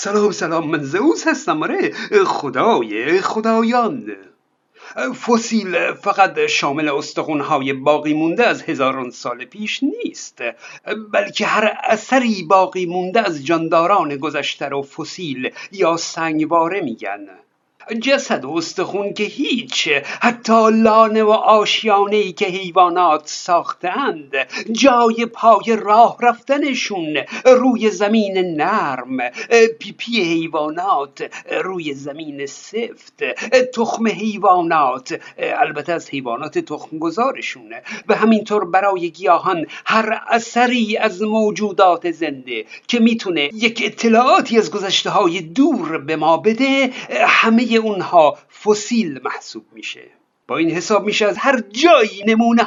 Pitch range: 170-240 Hz